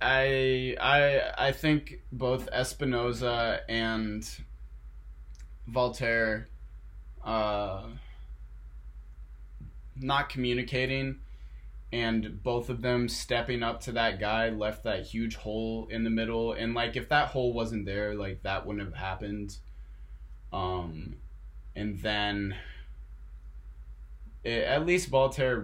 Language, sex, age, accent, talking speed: English, male, 20-39, American, 110 wpm